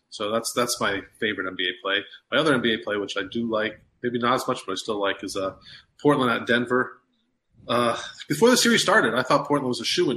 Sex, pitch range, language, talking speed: male, 100-125 Hz, English, 230 wpm